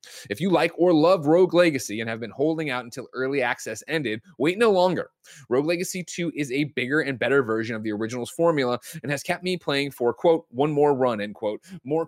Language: English